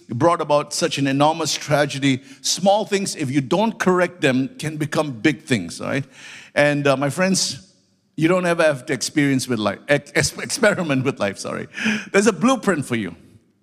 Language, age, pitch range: English, 50-69, 140-180 Hz